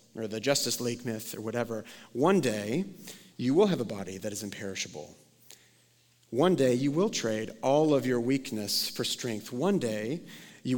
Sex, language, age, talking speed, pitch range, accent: male, English, 40-59, 175 wpm, 115-140 Hz, American